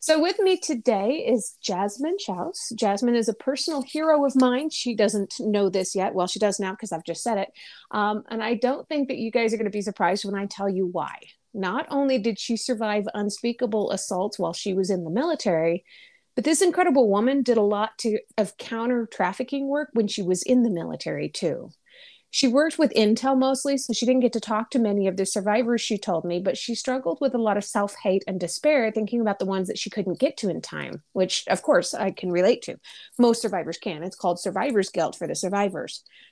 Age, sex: 30-49, female